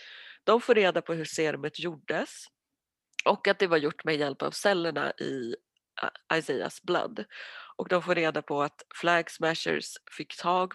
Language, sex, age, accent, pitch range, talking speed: Swedish, female, 30-49, native, 160-205 Hz, 160 wpm